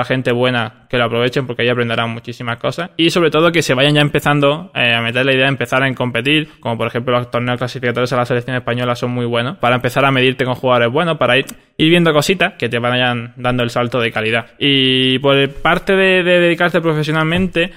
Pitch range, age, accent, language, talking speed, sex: 125-150 Hz, 20-39, Spanish, Spanish, 225 wpm, male